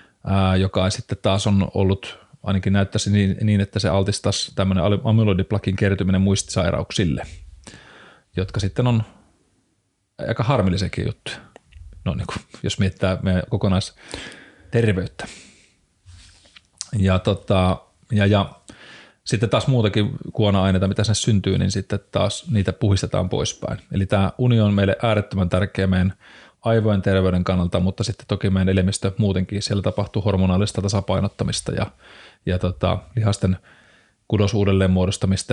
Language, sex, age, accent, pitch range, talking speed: Finnish, male, 30-49, native, 95-110 Hz, 120 wpm